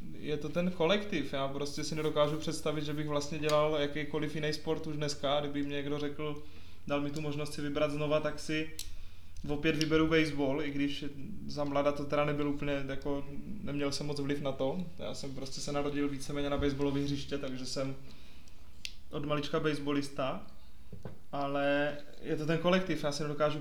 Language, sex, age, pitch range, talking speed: Czech, male, 20-39, 145-155 Hz, 180 wpm